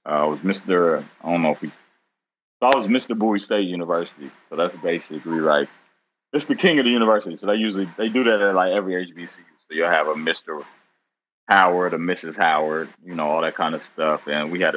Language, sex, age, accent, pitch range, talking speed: English, male, 30-49, American, 80-95 Hz, 225 wpm